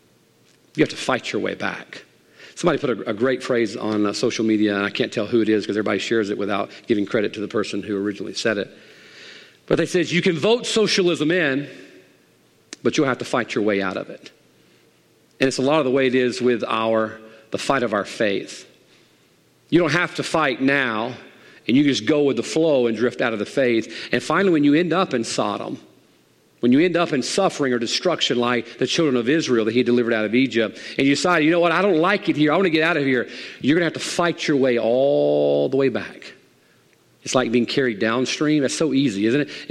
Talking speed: 235 wpm